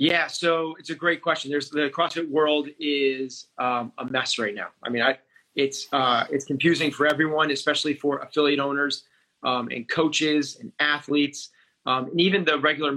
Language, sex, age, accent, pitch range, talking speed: English, male, 30-49, American, 135-160 Hz, 180 wpm